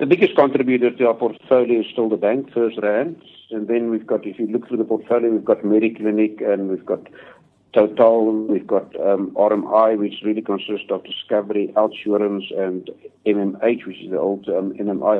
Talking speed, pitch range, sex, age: 185 wpm, 105-115 Hz, male, 60-79